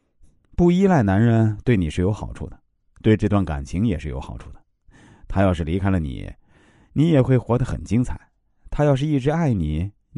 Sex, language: male, Chinese